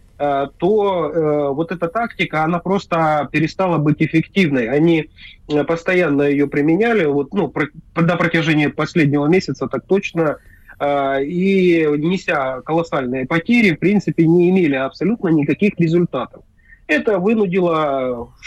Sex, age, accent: male, 30-49, native